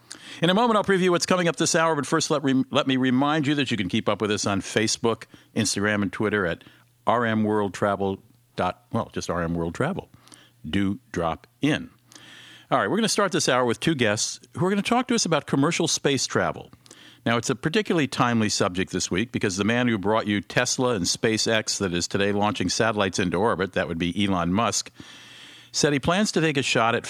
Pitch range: 100-145 Hz